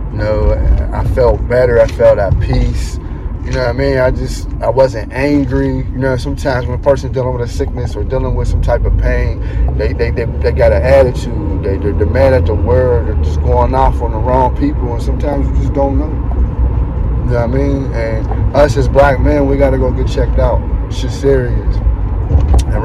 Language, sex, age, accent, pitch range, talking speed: English, male, 30-49, American, 100-130 Hz, 220 wpm